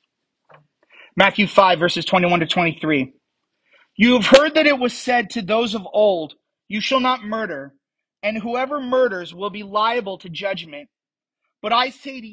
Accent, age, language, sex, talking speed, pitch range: American, 30-49, English, male, 160 wpm, 165-235 Hz